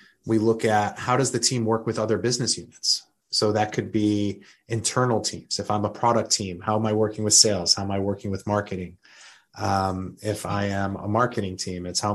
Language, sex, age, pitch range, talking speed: English, male, 30-49, 100-115 Hz, 215 wpm